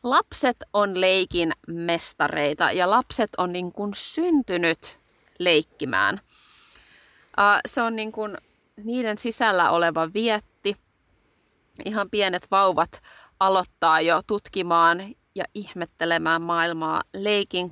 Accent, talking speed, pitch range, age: native, 100 wpm, 170-210 Hz, 20-39